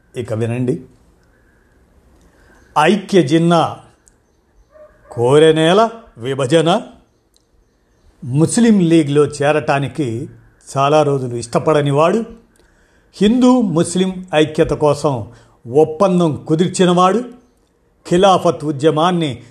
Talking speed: 60 wpm